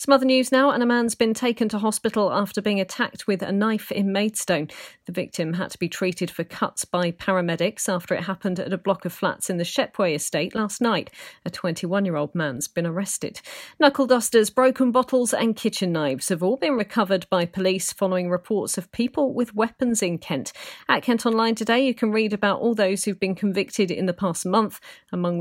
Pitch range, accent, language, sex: 175-225 Hz, British, English, female